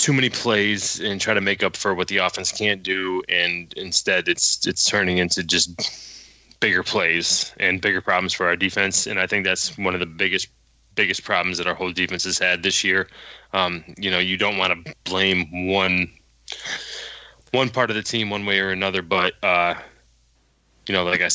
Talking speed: 200 wpm